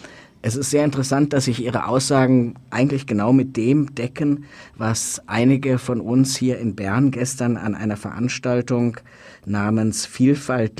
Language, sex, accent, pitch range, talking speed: German, male, German, 105-125 Hz, 145 wpm